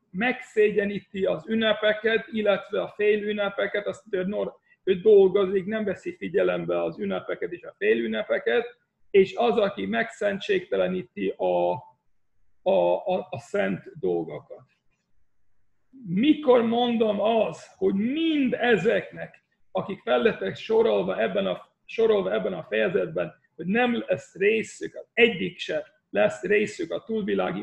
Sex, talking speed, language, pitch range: male, 115 wpm, Hungarian, 195-280 Hz